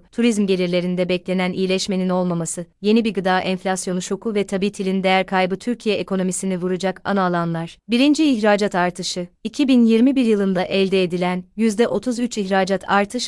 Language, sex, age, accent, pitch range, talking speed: Turkish, female, 30-49, native, 185-220 Hz, 130 wpm